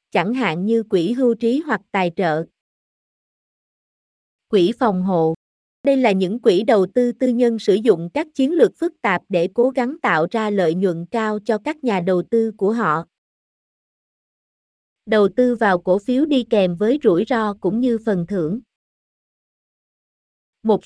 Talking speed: 165 wpm